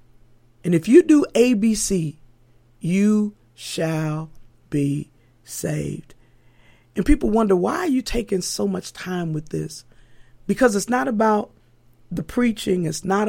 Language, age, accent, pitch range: English, 40-59, American, 120-185 Hz